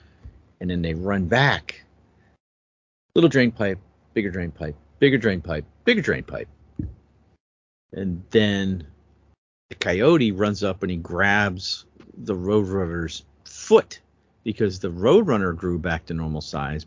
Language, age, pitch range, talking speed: English, 50-69, 80-100 Hz, 130 wpm